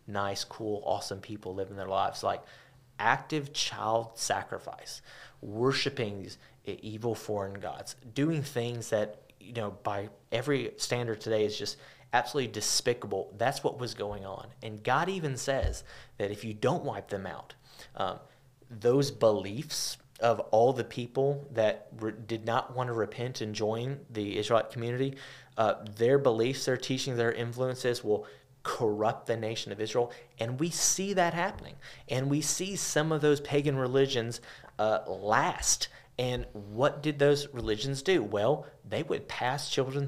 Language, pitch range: English, 110-135 Hz